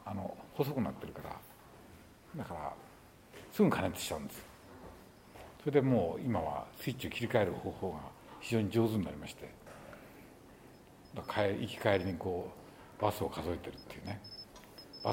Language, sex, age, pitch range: Japanese, male, 60-79, 100-135 Hz